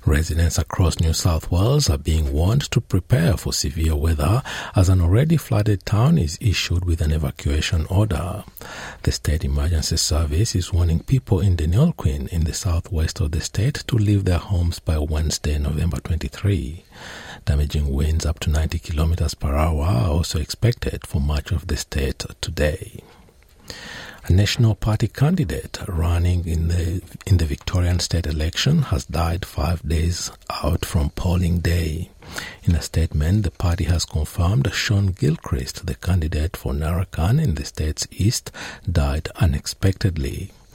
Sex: male